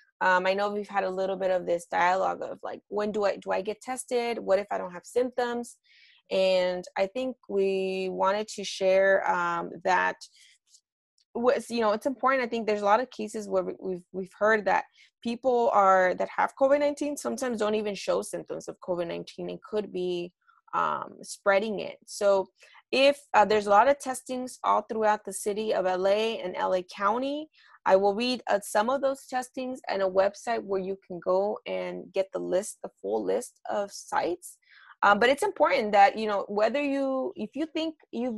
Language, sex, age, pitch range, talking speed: English, female, 20-39, 190-260 Hz, 200 wpm